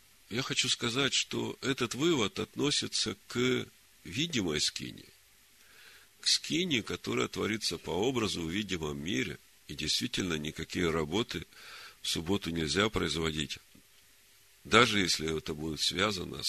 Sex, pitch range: male, 85-125 Hz